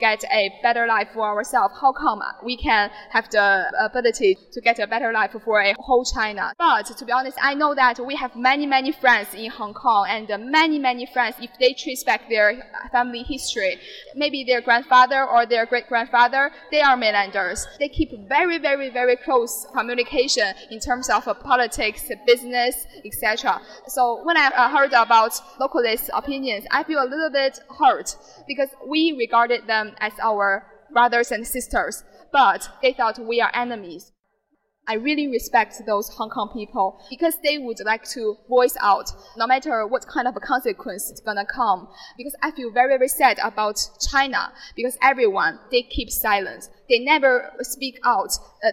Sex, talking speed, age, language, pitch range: female, 175 wpm, 10-29, English, 225-275 Hz